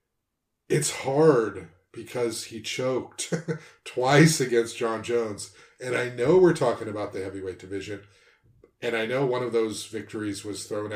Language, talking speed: English, 150 wpm